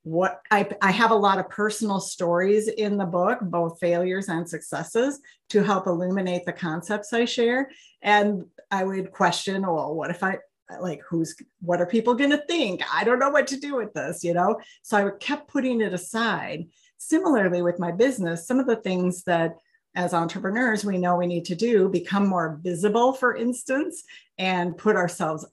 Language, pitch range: English, 175-225 Hz